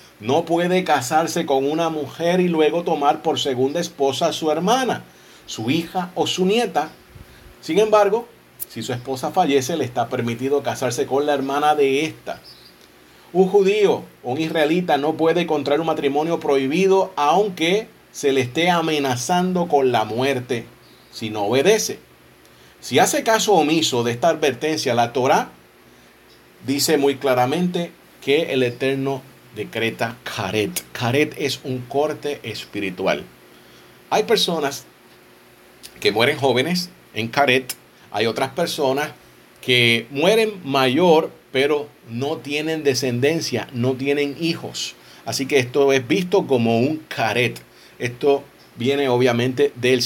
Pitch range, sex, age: 125-165 Hz, male, 40-59